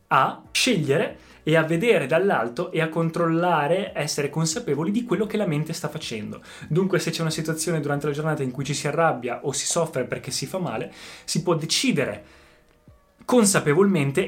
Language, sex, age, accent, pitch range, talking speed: Italian, male, 20-39, native, 125-160 Hz, 175 wpm